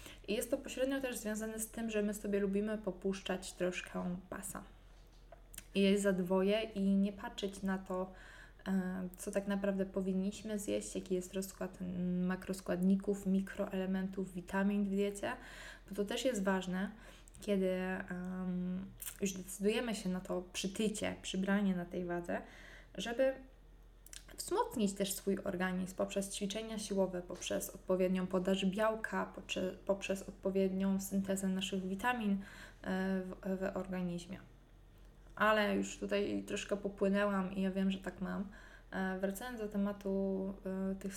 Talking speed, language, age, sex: 125 wpm, Polish, 20-39, female